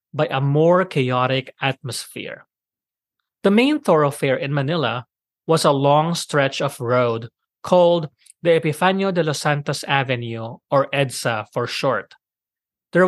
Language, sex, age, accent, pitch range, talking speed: English, male, 30-49, Filipino, 130-180 Hz, 130 wpm